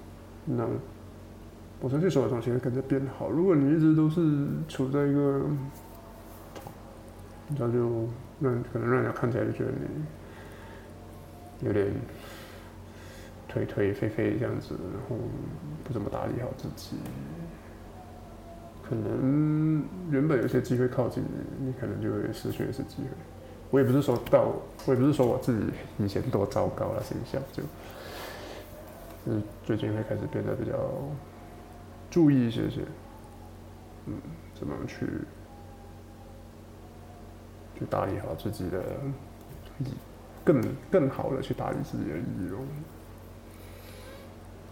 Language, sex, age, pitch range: Chinese, male, 20-39, 105-130 Hz